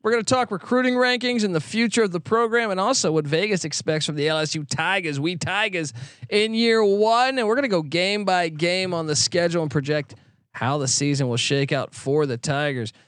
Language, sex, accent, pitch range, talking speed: English, male, American, 150-205 Hz, 220 wpm